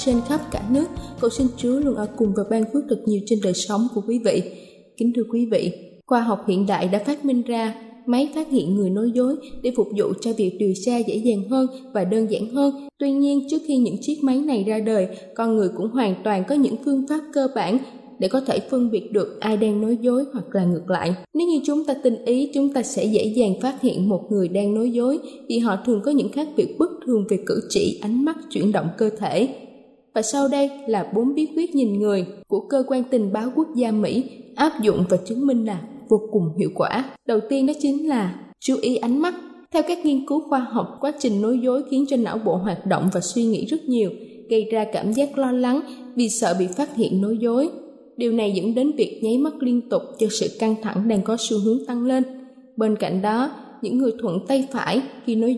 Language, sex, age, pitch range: Thai, female, 10-29, 215-270 Hz